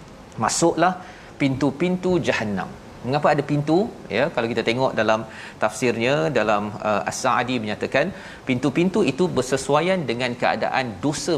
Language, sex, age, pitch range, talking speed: Malayalam, male, 40-59, 110-135 Hz, 115 wpm